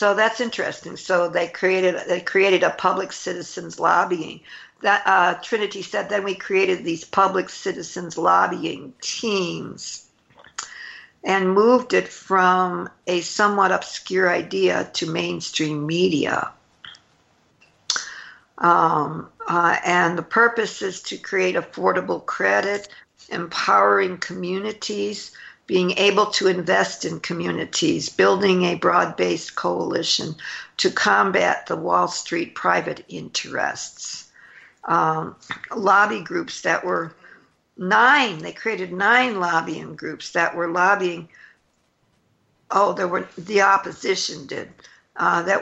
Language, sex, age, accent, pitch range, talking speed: English, female, 60-79, American, 180-205 Hz, 115 wpm